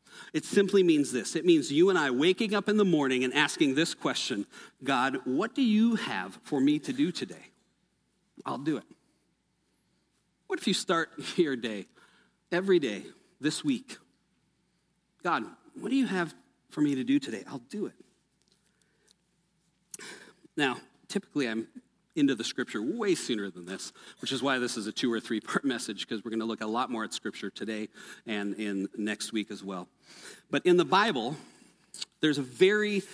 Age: 40-59